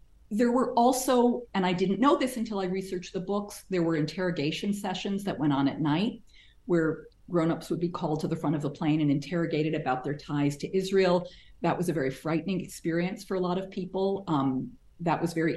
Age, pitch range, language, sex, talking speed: 40-59, 155-200 Hz, English, female, 210 wpm